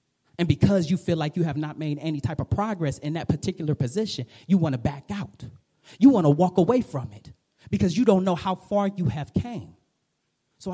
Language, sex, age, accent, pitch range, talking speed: English, male, 30-49, American, 145-200 Hz, 220 wpm